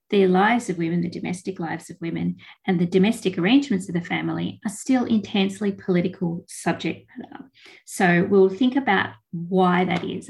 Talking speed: 170 wpm